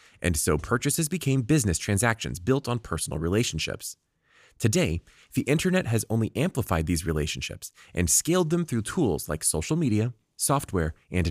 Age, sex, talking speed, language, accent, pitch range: 30-49, male, 150 wpm, English, American, 90-130 Hz